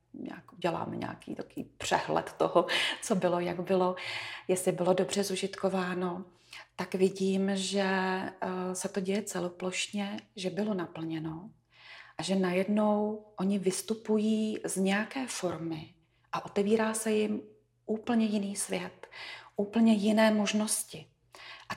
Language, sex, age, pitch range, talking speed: Czech, female, 30-49, 180-215 Hz, 115 wpm